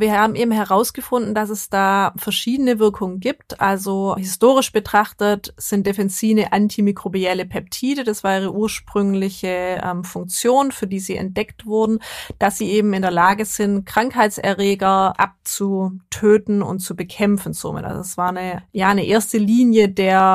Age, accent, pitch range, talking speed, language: 20-39, German, 190-215 Hz, 145 wpm, German